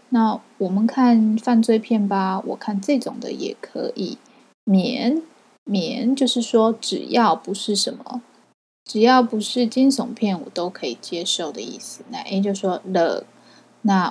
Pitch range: 195-245 Hz